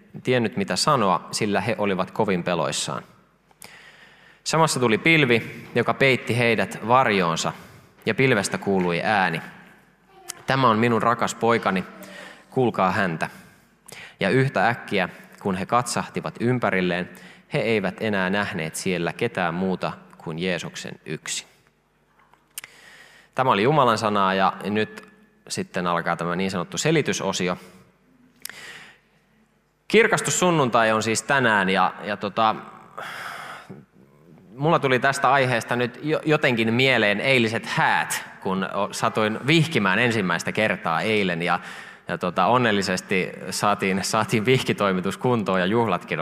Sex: male